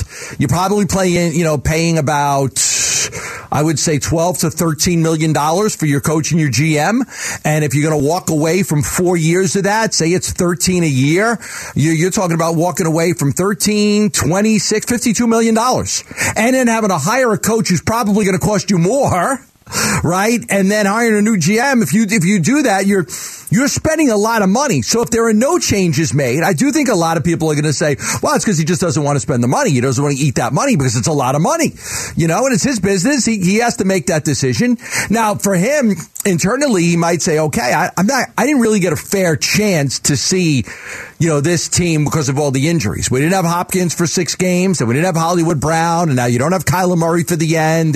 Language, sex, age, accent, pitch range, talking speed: English, male, 40-59, American, 155-205 Hz, 235 wpm